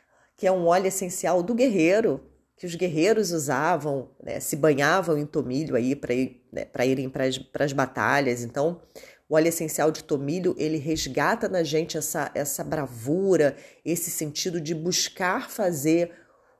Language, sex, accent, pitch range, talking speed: Portuguese, female, Brazilian, 150-190 Hz, 155 wpm